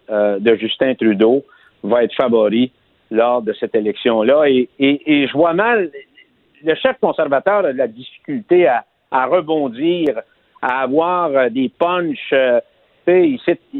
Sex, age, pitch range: male, 60-79, 140-235 Hz